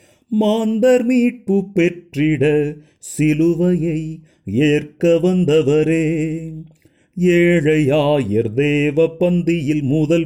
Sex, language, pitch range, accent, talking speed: male, Tamil, 150-180 Hz, native, 60 wpm